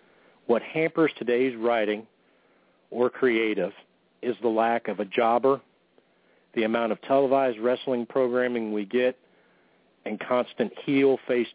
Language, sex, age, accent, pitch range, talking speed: English, male, 40-59, American, 115-135 Hz, 120 wpm